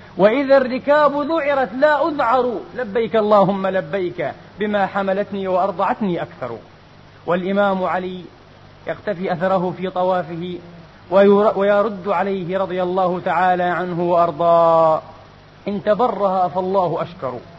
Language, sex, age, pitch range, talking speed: Arabic, male, 30-49, 175-245 Hz, 100 wpm